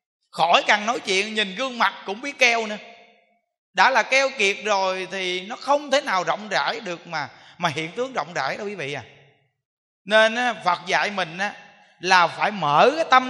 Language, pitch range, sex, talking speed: Vietnamese, 175-240 Hz, male, 205 wpm